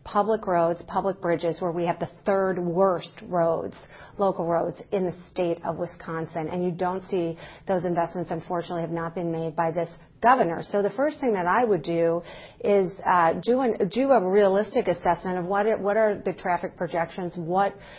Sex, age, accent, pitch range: female, 40-59, American, 170-190 Hz